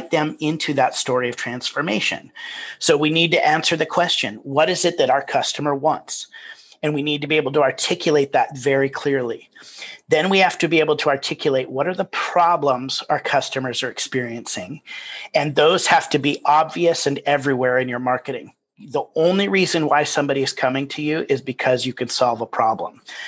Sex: male